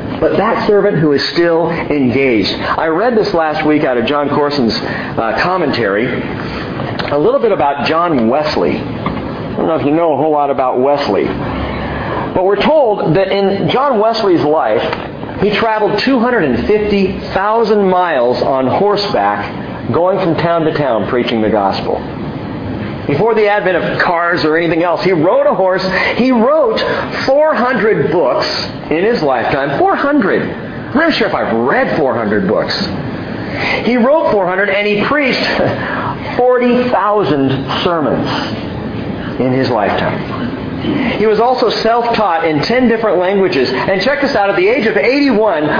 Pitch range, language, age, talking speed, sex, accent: 155-225 Hz, English, 50-69, 150 wpm, male, American